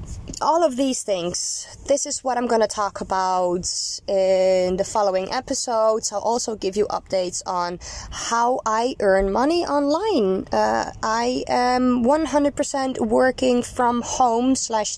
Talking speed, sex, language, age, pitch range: 140 wpm, female, English, 20-39, 190-265 Hz